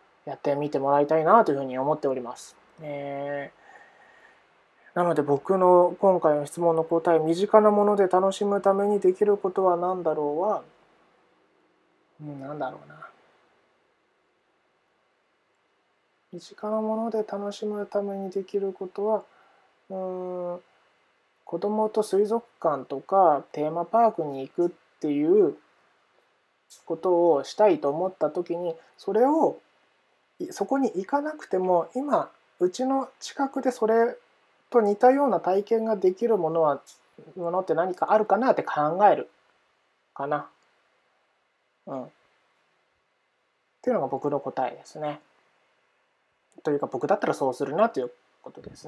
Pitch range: 150-210 Hz